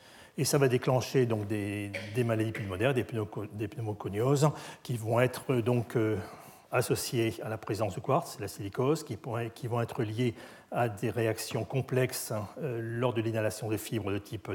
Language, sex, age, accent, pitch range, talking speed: French, male, 40-59, French, 115-150 Hz, 155 wpm